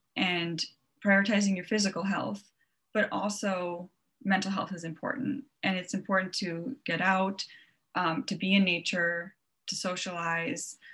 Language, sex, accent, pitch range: English, female, American, 180-215 Hz